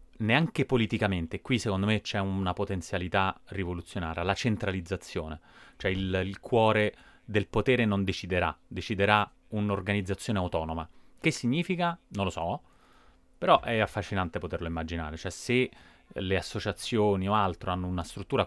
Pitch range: 90-105 Hz